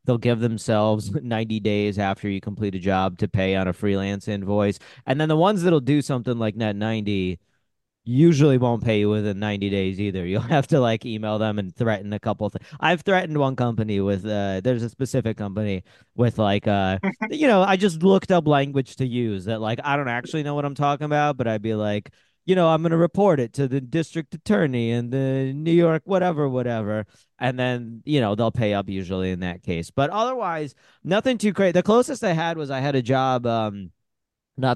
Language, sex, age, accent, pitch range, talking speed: English, male, 30-49, American, 105-150 Hz, 220 wpm